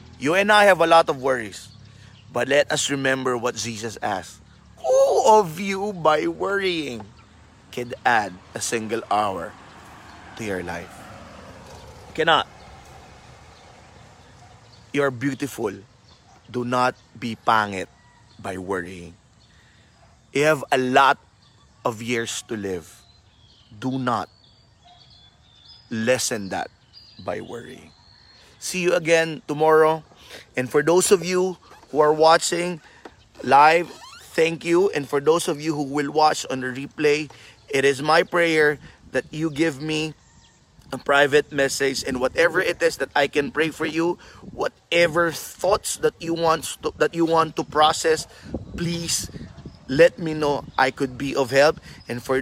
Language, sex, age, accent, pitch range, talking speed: Filipino, male, 30-49, native, 120-165 Hz, 140 wpm